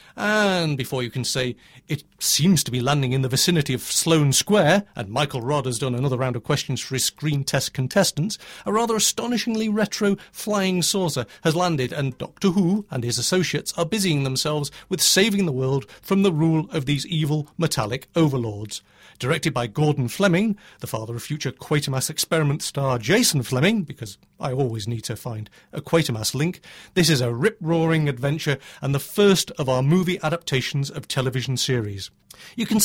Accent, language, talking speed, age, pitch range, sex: British, English, 180 wpm, 40-59, 125-170 Hz, male